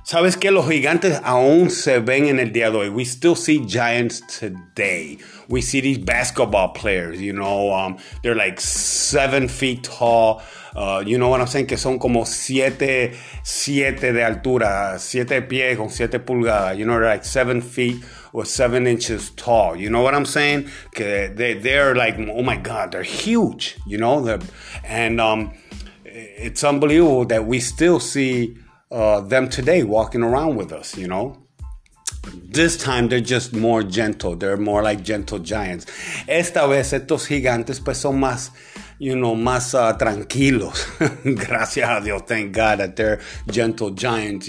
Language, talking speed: English, 165 wpm